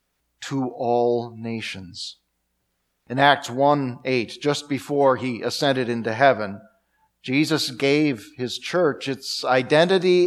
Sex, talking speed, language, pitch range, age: male, 105 wpm, English, 110-150 Hz, 40-59